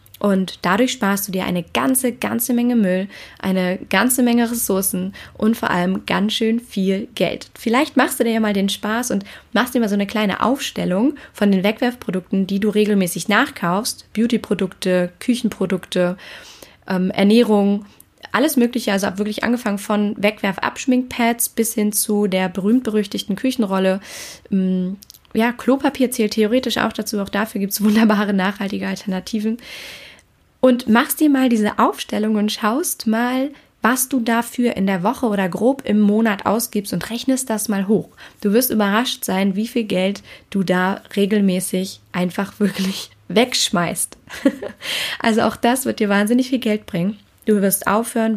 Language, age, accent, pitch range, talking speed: German, 20-39, German, 195-240 Hz, 155 wpm